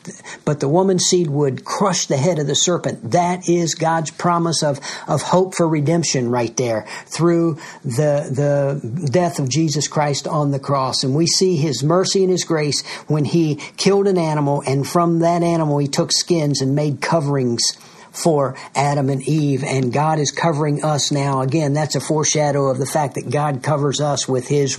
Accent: American